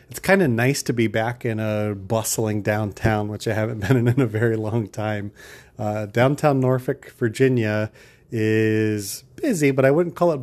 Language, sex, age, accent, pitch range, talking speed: English, male, 30-49, American, 110-130 Hz, 185 wpm